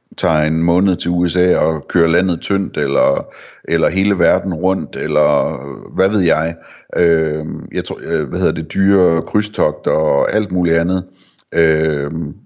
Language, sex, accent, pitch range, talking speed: Danish, male, native, 80-95 Hz, 150 wpm